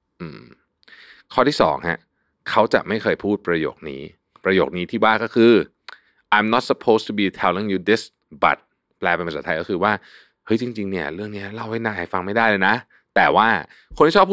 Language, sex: Thai, male